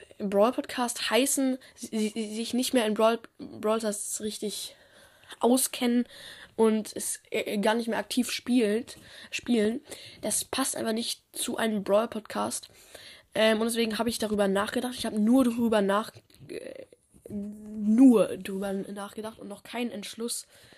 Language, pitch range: German, 205-235 Hz